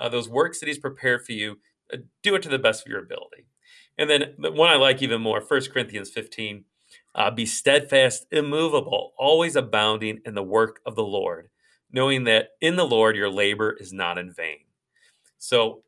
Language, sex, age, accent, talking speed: English, male, 40-59, American, 195 wpm